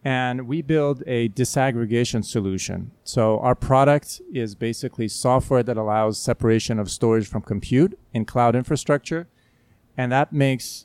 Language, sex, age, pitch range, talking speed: English, male, 40-59, 115-135 Hz, 140 wpm